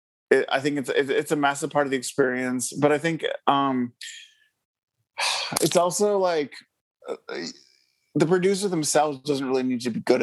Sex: male